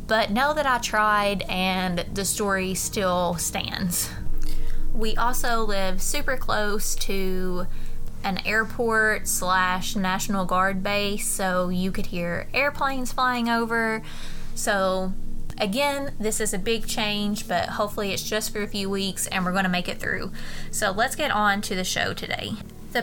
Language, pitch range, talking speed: English, 190-225 Hz, 155 wpm